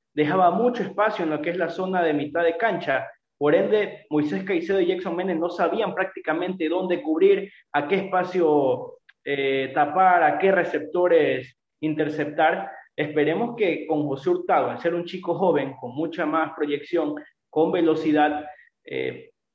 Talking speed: 155 wpm